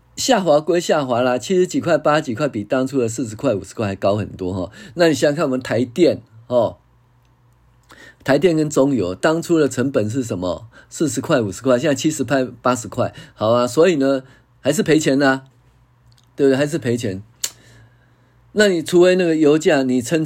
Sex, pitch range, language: male, 110-135 Hz, Chinese